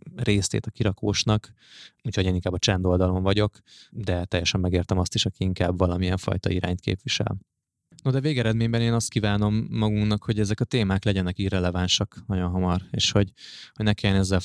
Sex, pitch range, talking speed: male, 95-110 Hz, 170 wpm